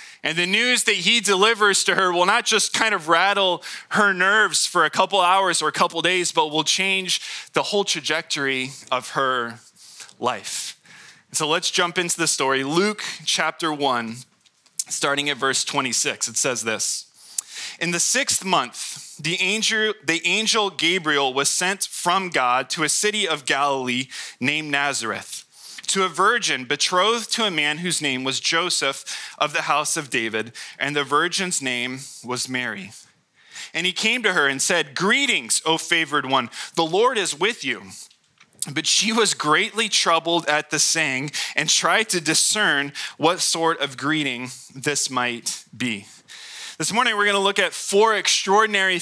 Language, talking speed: English, 165 wpm